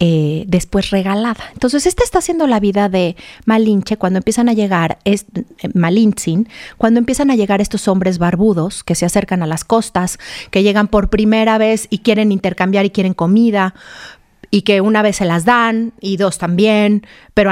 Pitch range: 180-220 Hz